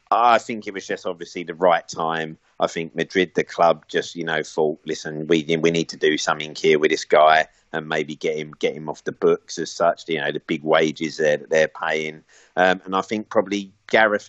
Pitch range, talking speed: 85-95 Hz, 230 wpm